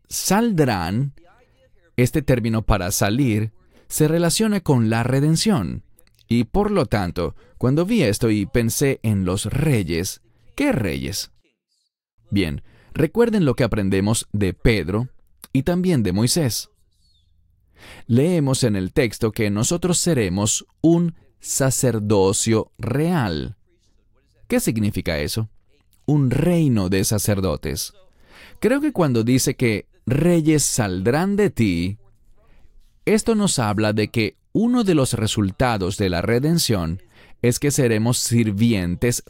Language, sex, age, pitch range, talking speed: English, male, 30-49, 100-145 Hz, 120 wpm